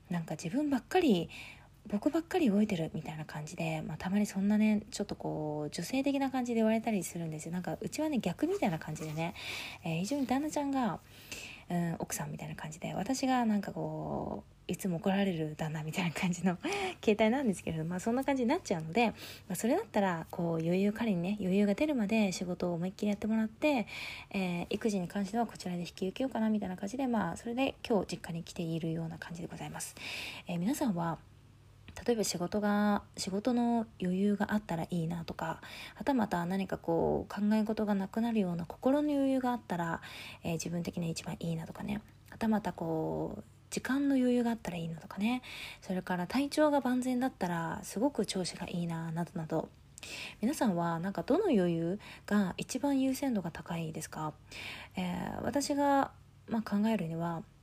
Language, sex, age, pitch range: Japanese, female, 20-39, 170-230 Hz